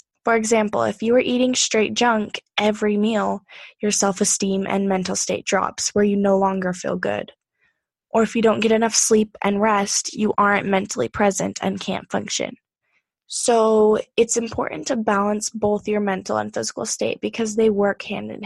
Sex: female